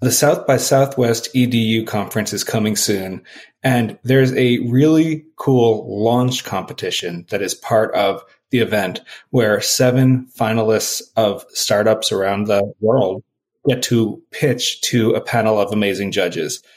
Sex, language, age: male, English, 30-49